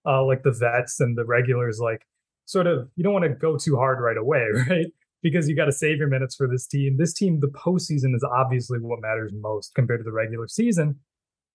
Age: 30-49